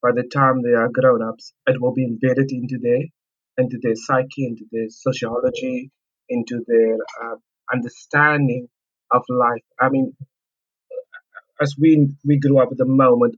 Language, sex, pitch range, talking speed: English, male, 125-145 Hz, 155 wpm